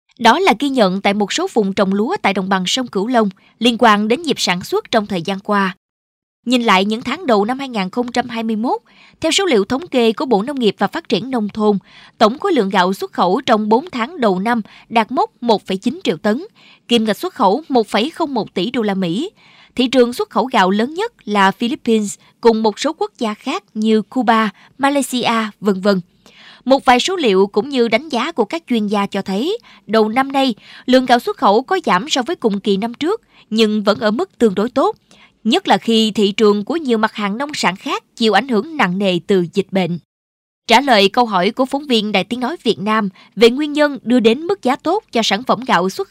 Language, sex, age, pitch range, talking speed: Vietnamese, female, 20-39, 200-255 Hz, 225 wpm